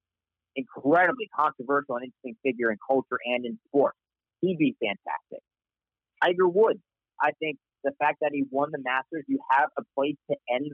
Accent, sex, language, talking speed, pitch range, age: American, male, English, 170 wpm, 125-165 Hz, 40-59